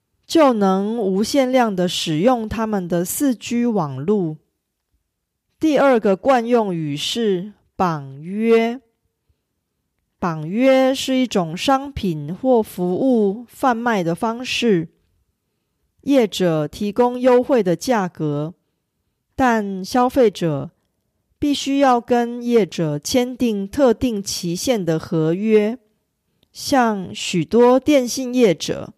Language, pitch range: Korean, 175-250 Hz